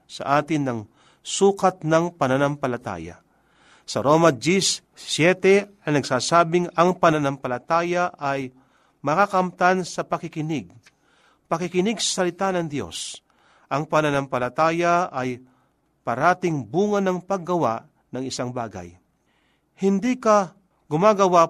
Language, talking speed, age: Filipino, 100 wpm, 50-69